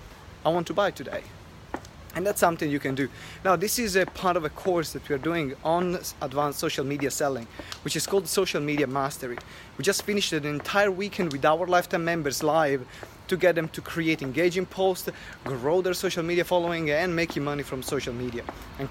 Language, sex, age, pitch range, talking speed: English, male, 20-39, 140-170 Hz, 205 wpm